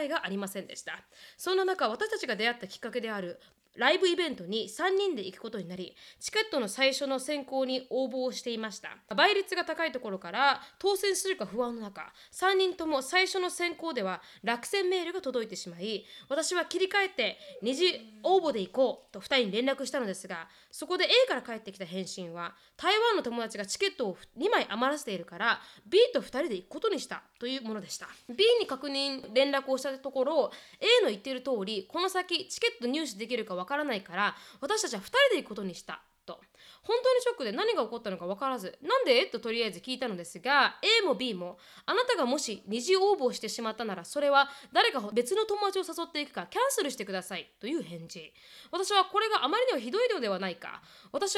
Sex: female